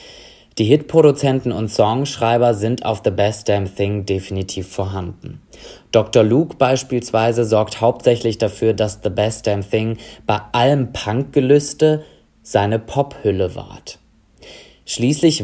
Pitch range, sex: 105-130 Hz, male